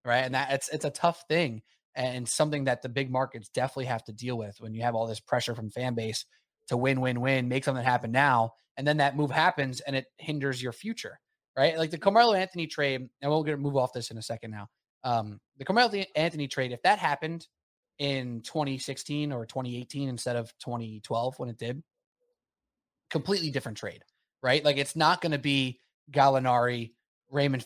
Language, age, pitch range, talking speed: English, 20-39, 125-150 Hz, 200 wpm